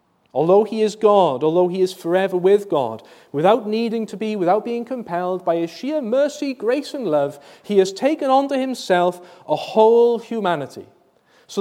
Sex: male